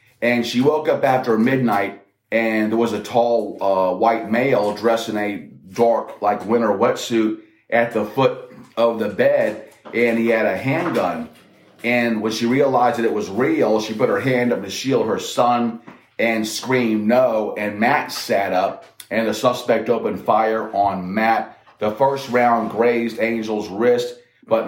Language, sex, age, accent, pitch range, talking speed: English, male, 30-49, American, 105-115 Hz, 170 wpm